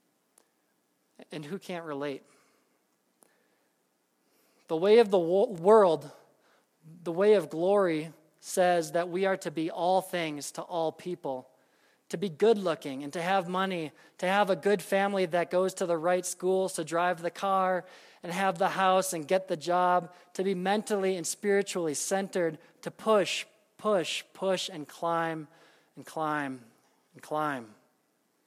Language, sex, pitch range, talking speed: English, male, 150-190 Hz, 150 wpm